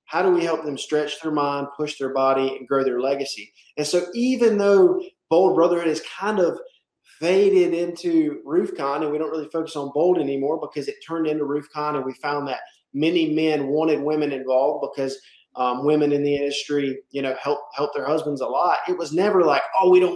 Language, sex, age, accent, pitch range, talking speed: English, male, 20-39, American, 140-175 Hz, 210 wpm